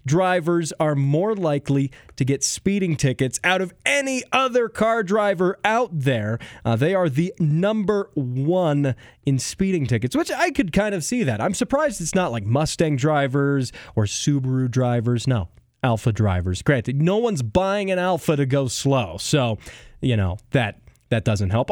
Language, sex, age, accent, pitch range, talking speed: English, male, 20-39, American, 120-185 Hz, 170 wpm